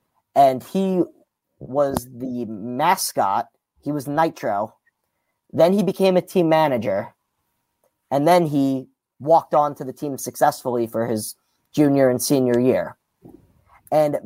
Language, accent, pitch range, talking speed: English, American, 125-155 Hz, 125 wpm